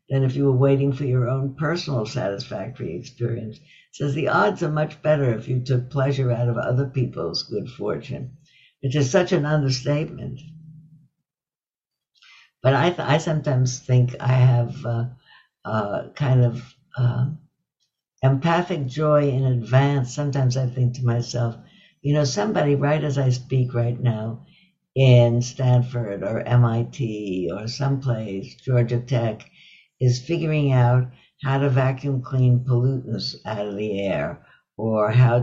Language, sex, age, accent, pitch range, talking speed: English, female, 60-79, American, 120-140 Hz, 145 wpm